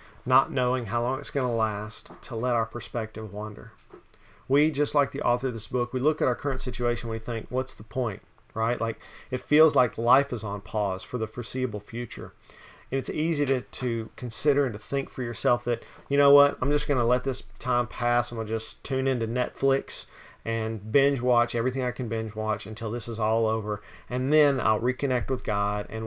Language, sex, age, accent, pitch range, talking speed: English, male, 40-59, American, 115-135 Hz, 220 wpm